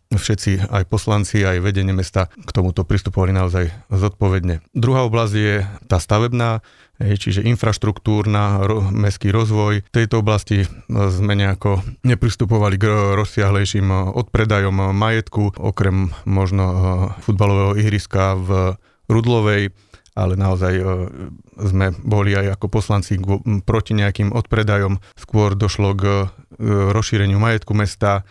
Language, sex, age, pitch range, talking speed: Slovak, male, 30-49, 95-110 Hz, 110 wpm